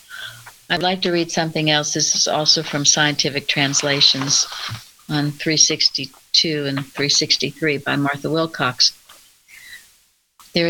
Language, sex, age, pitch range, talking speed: English, female, 60-79, 150-175 Hz, 110 wpm